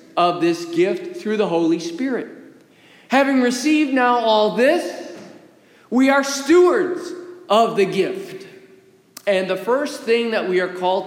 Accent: American